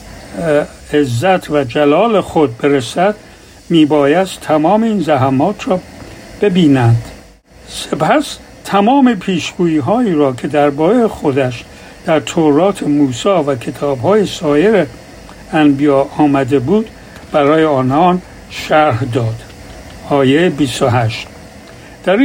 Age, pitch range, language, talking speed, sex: 60-79, 140-190 Hz, Persian, 95 wpm, male